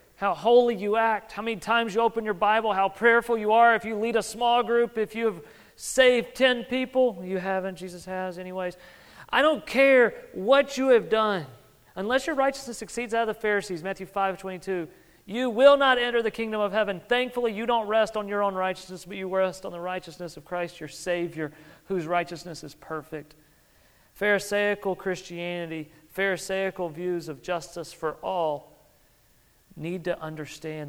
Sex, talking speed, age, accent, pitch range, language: male, 175 wpm, 40-59, American, 155-225 Hz, English